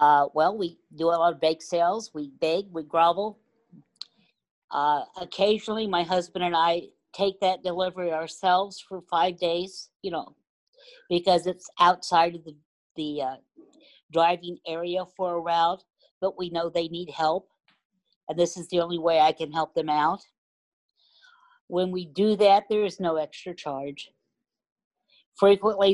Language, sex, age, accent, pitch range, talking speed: English, female, 50-69, American, 165-200 Hz, 155 wpm